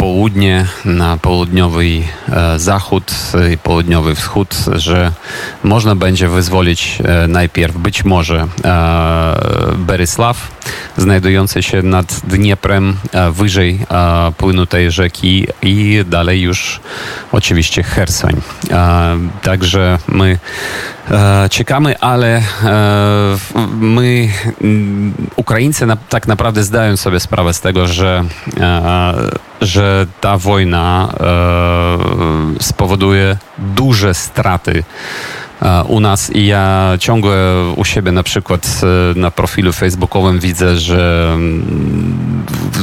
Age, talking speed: 30-49, 105 wpm